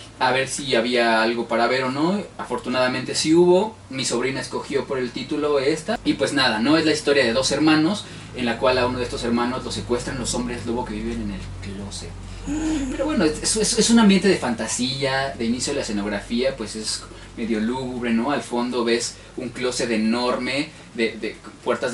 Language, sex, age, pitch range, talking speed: Spanish, male, 20-39, 110-140 Hz, 205 wpm